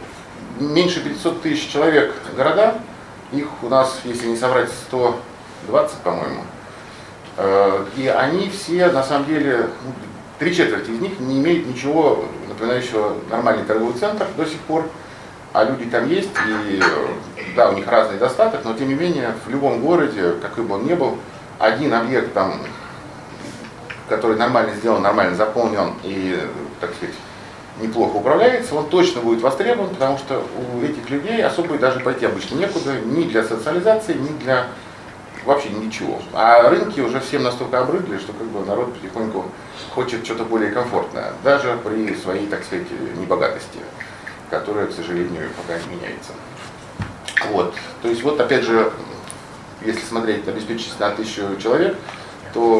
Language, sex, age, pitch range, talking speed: Russian, male, 40-59, 110-145 Hz, 145 wpm